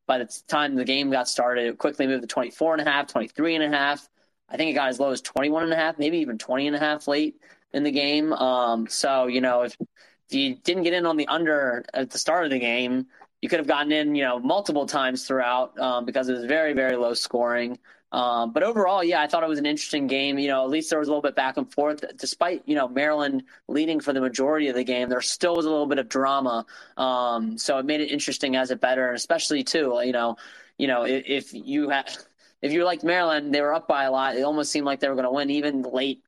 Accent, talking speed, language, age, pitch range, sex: American, 265 wpm, English, 20-39, 125-150 Hz, male